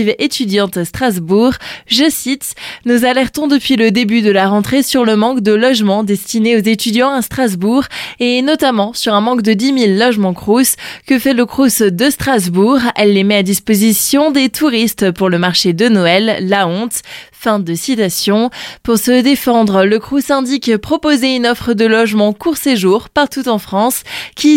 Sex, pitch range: female, 205-255 Hz